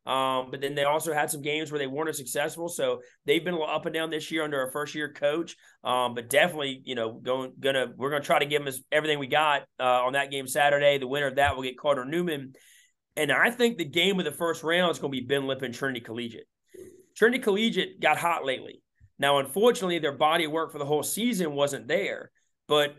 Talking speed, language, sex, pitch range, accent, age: 240 wpm, English, male, 135-175 Hz, American, 30-49